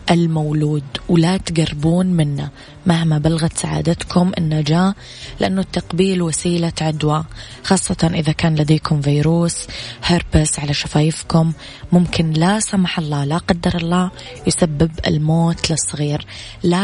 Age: 20-39